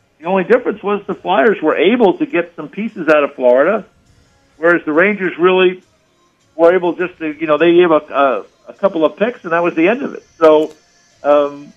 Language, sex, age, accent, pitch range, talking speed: English, male, 50-69, American, 145-195 Hz, 215 wpm